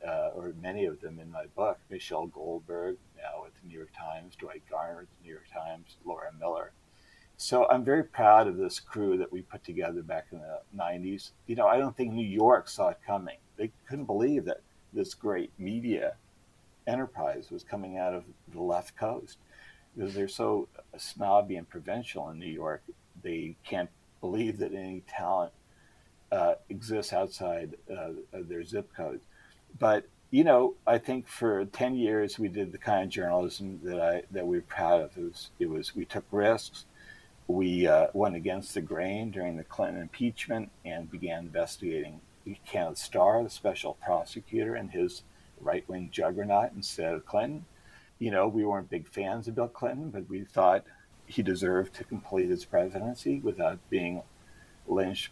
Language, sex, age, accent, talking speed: English, male, 50-69, American, 175 wpm